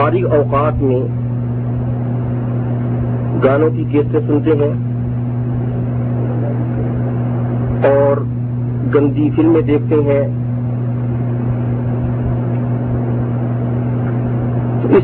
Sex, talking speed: male, 50 wpm